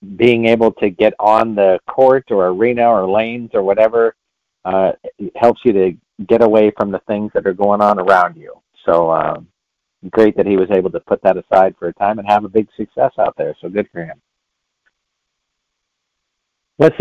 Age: 50-69